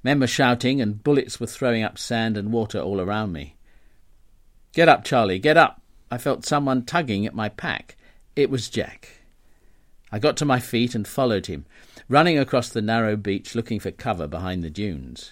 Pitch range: 100-140 Hz